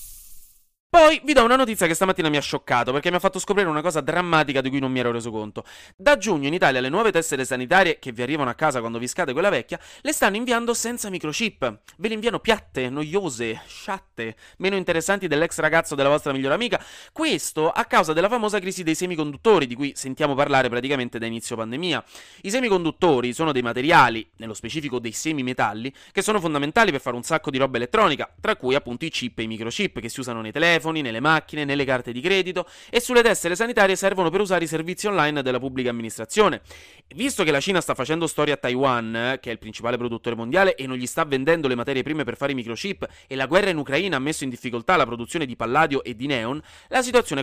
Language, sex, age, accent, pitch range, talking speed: Italian, male, 30-49, native, 125-185 Hz, 220 wpm